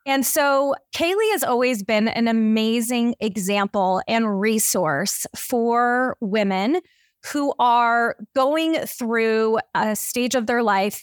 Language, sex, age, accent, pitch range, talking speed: English, female, 20-39, American, 210-270 Hz, 120 wpm